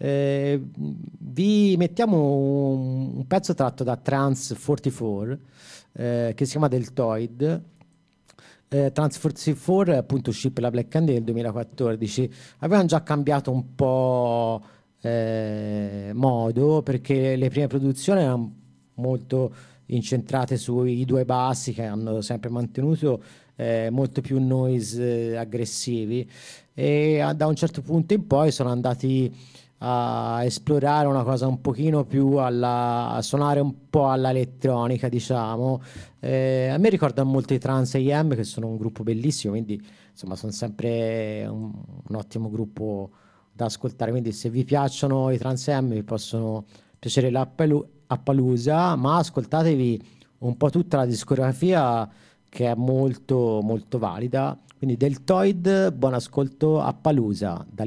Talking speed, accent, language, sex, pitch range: 130 wpm, native, Italian, male, 115-140 Hz